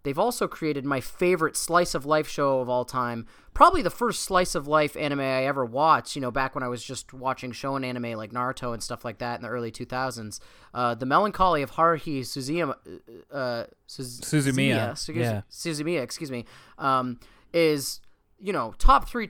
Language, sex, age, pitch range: English, male, 30-49, 120-160 Hz